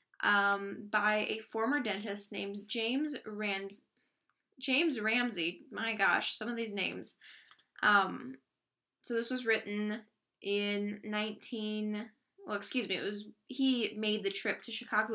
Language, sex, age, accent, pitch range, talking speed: English, female, 10-29, American, 205-255 Hz, 135 wpm